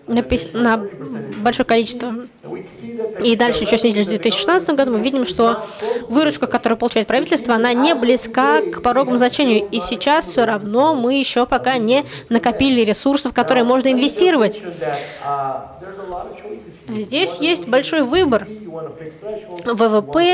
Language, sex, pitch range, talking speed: Russian, female, 205-250 Hz, 120 wpm